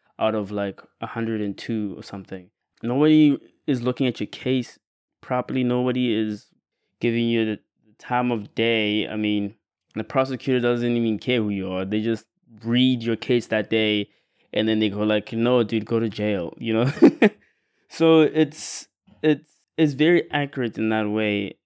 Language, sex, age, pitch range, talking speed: English, male, 20-39, 110-135 Hz, 165 wpm